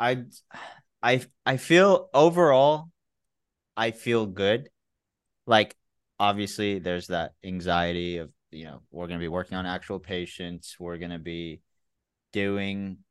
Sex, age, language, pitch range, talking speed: male, 20-39, English, 90-110 Hz, 135 wpm